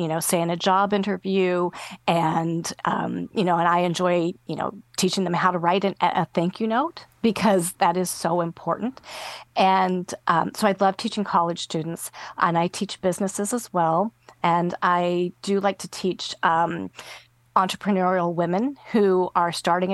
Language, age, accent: English, 40-59, American